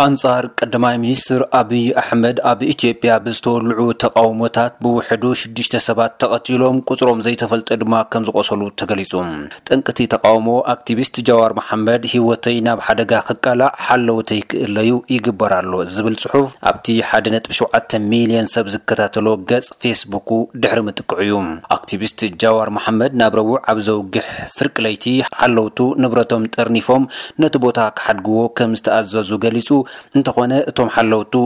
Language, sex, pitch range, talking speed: Amharic, male, 110-120 Hz, 115 wpm